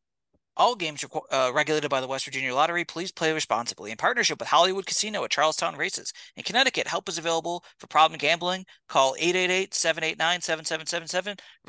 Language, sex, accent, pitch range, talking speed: English, male, American, 140-175 Hz, 160 wpm